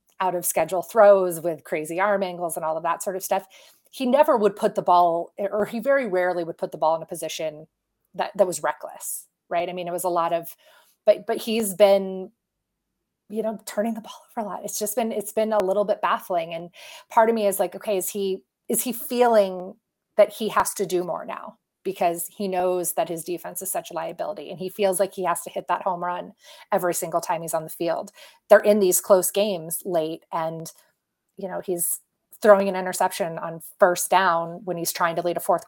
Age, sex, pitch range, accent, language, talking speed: 30-49, female, 175-210 Hz, American, English, 225 wpm